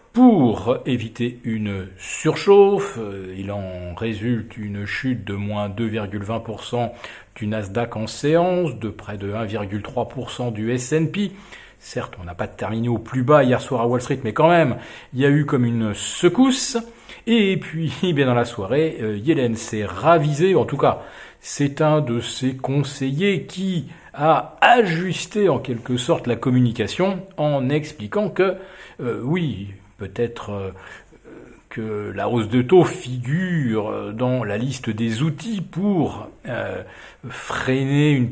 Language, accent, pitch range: French, French, 110-165 Hz